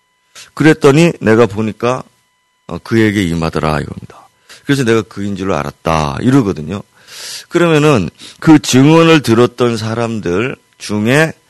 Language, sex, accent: Korean, male, native